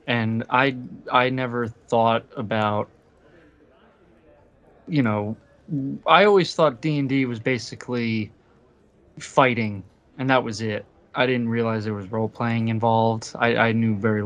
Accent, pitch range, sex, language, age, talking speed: American, 110-125 Hz, male, English, 20-39, 140 wpm